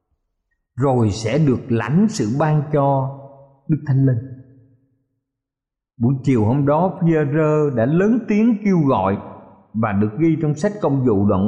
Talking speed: 150 wpm